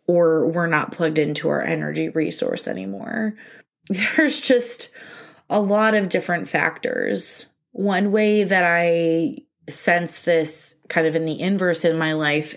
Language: English